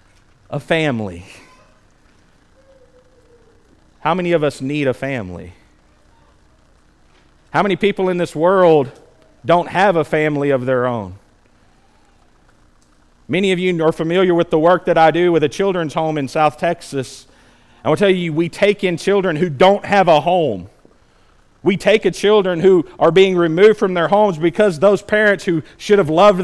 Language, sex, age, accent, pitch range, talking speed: English, male, 40-59, American, 145-195 Hz, 160 wpm